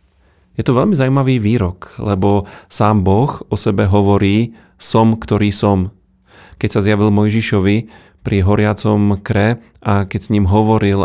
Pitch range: 100-110 Hz